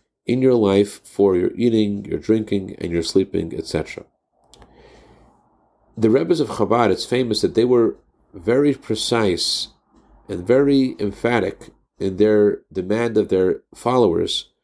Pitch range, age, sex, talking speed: 100-135 Hz, 50-69, male, 130 wpm